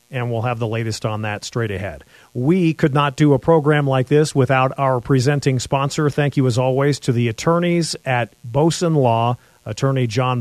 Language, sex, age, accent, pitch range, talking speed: English, male, 40-59, American, 125-155 Hz, 190 wpm